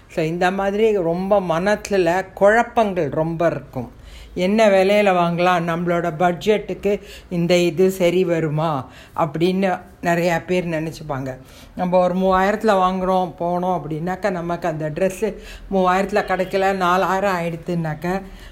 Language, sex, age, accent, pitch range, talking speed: Tamil, female, 60-79, native, 170-205 Hz, 110 wpm